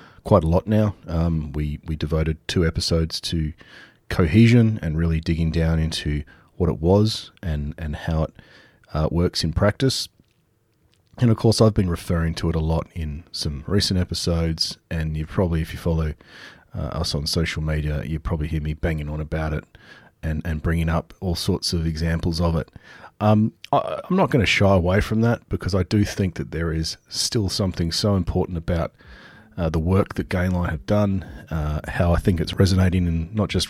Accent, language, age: Australian, English, 30-49